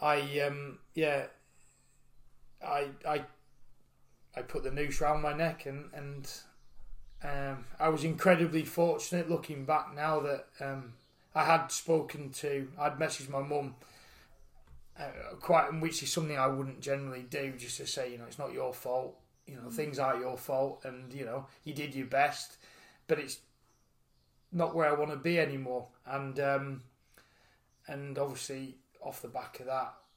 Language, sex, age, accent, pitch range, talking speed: English, male, 20-39, British, 130-145 Hz, 160 wpm